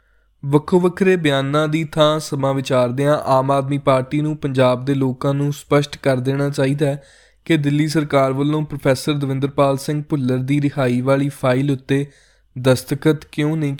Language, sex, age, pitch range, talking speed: Punjabi, male, 20-39, 135-150 Hz, 155 wpm